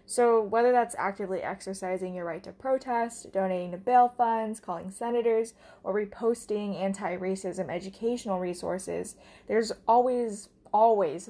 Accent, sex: American, female